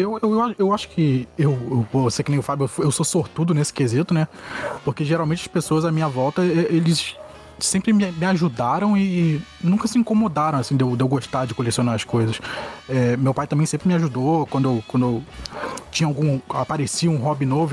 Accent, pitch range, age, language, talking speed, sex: Brazilian, 130-175 Hz, 20-39, Portuguese, 190 wpm, male